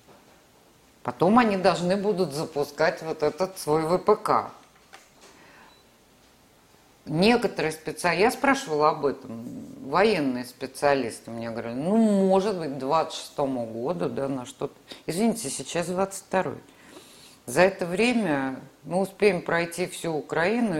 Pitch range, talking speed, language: 140-185 Hz, 115 wpm, Russian